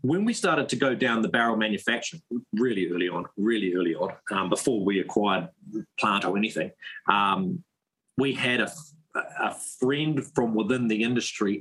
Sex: male